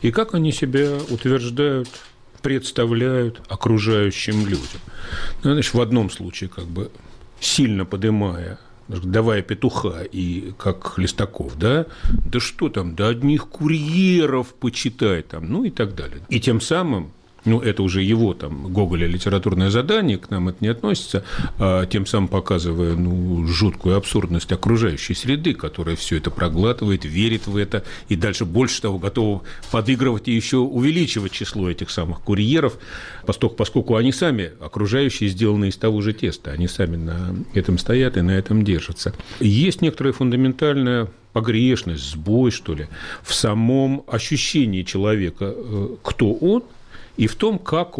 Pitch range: 95-125 Hz